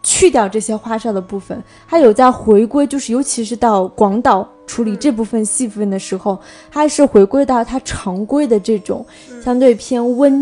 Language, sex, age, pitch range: Chinese, female, 20-39, 210-265 Hz